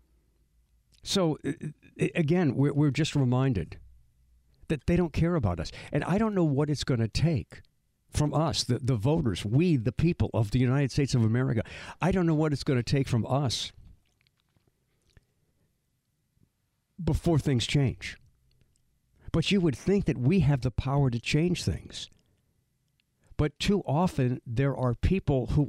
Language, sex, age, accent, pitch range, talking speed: English, male, 60-79, American, 115-160 Hz, 150 wpm